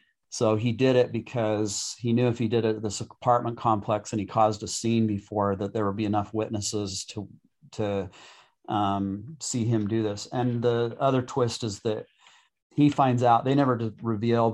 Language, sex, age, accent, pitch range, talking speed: English, male, 40-59, American, 105-120 Hz, 190 wpm